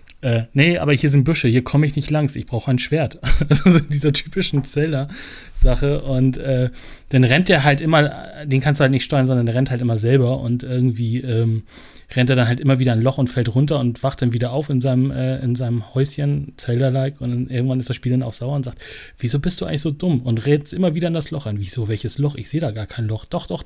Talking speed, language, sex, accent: 255 wpm, German, male, German